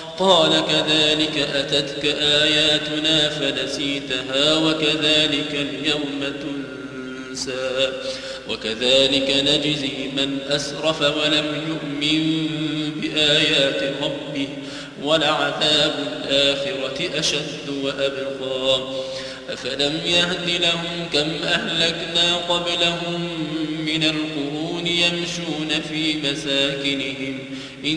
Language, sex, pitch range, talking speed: Arabic, male, 140-175 Hz, 65 wpm